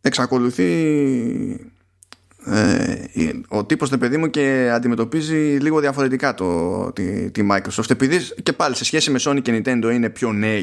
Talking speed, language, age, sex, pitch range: 150 wpm, Greek, 20-39, male, 105-150 Hz